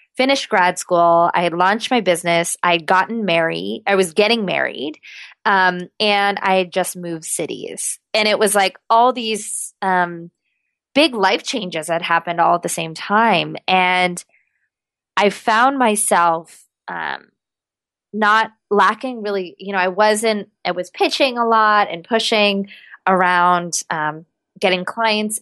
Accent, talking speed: American, 150 wpm